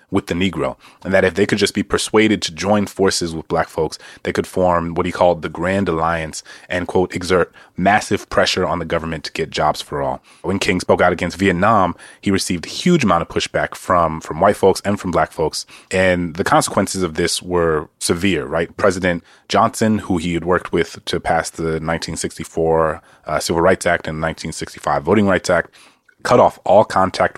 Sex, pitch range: male, 80-95 Hz